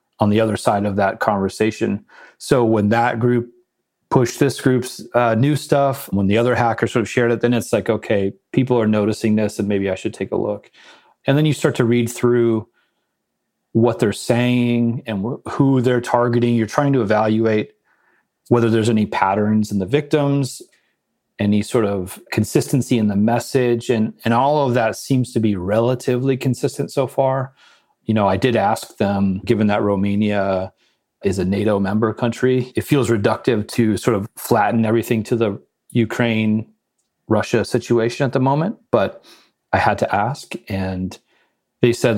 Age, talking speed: 30-49, 170 wpm